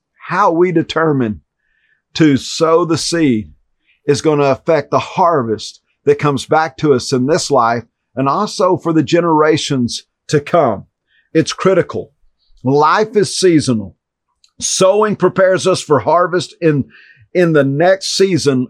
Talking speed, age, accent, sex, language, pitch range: 140 wpm, 50-69, American, male, English, 135-175 Hz